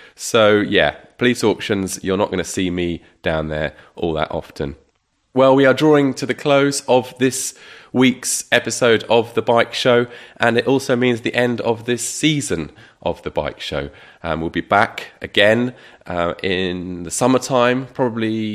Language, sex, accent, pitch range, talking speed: English, male, British, 90-115 Hz, 170 wpm